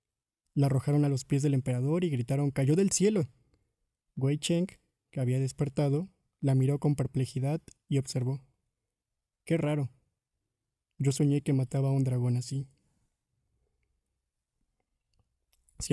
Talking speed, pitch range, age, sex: 130 wpm, 125-150 Hz, 20-39, male